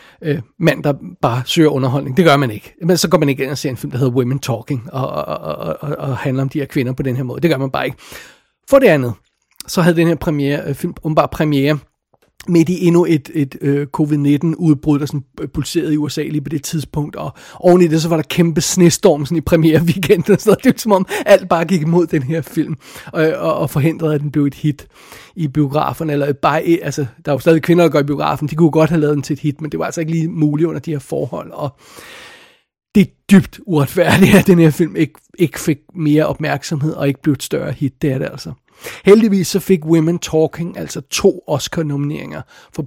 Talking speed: 235 wpm